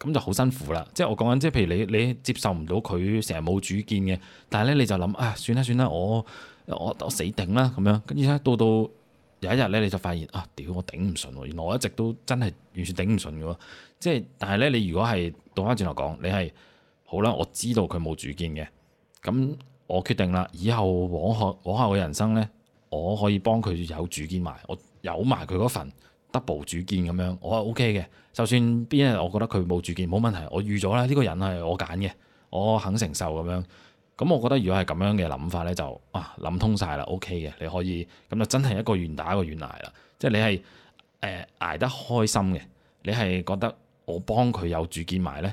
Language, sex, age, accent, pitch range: Chinese, male, 20-39, native, 90-110 Hz